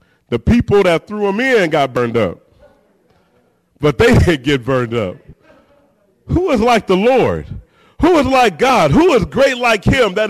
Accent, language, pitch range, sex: American, English, 195-285 Hz, male